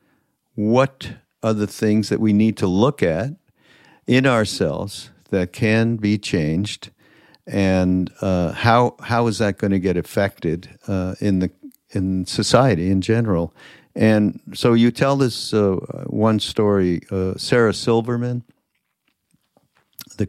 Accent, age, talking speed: American, 60-79, 135 wpm